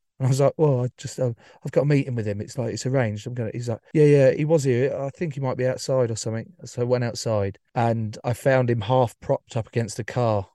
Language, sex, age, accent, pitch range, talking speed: English, male, 30-49, British, 110-135 Hz, 280 wpm